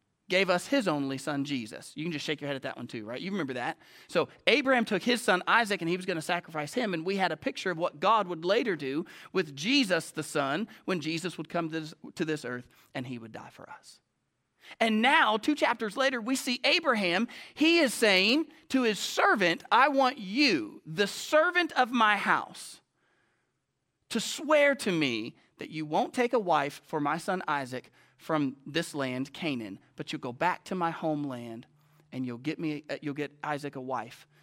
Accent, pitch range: American, 160-225 Hz